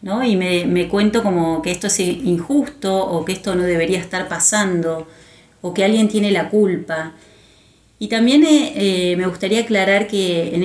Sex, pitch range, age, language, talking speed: female, 165-200 Hz, 30-49, Spanish, 170 wpm